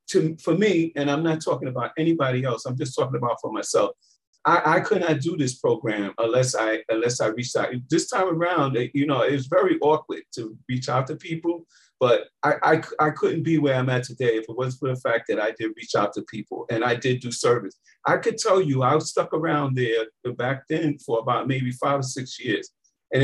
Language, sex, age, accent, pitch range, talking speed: English, male, 40-59, American, 125-160 Hz, 230 wpm